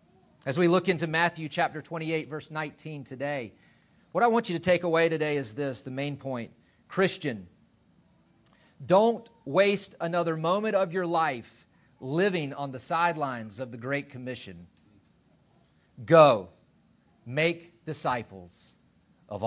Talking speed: 135 wpm